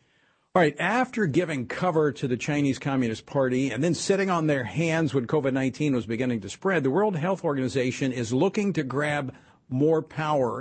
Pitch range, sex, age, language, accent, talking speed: 115-150 Hz, male, 50-69, English, American, 180 wpm